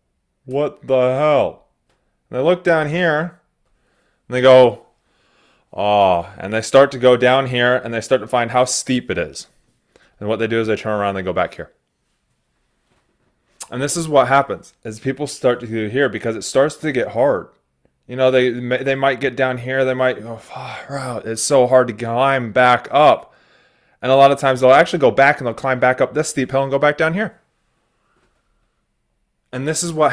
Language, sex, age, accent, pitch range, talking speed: English, male, 20-39, American, 110-135 Hz, 205 wpm